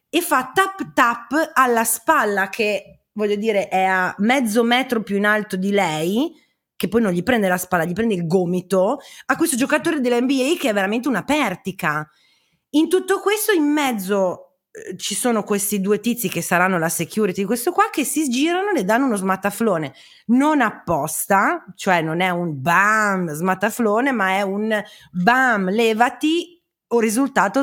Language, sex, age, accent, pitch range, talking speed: Italian, female, 30-49, native, 190-255 Hz, 165 wpm